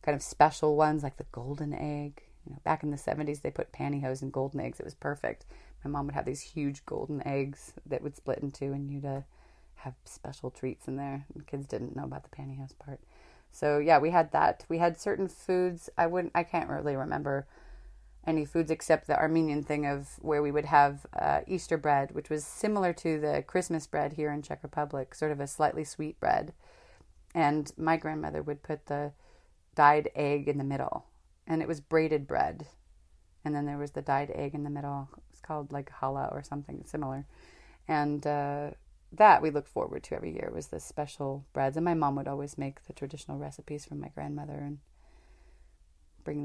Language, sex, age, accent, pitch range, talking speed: English, female, 30-49, American, 135-155 Hz, 200 wpm